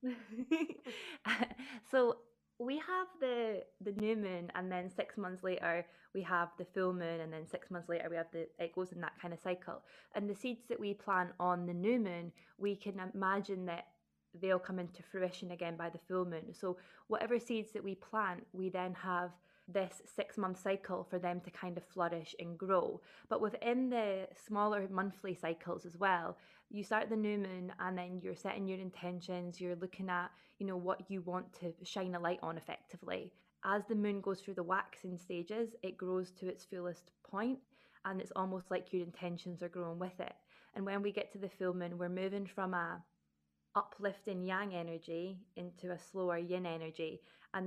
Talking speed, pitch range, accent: 195 wpm, 175-200 Hz, British